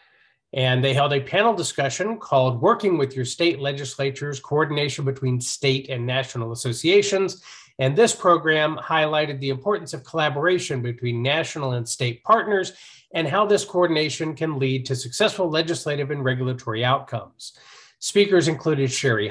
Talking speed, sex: 145 wpm, male